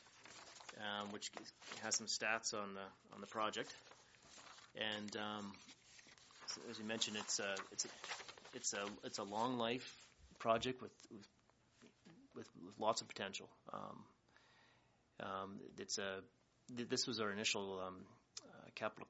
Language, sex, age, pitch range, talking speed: English, male, 30-49, 95-110 Hz, 145 wpm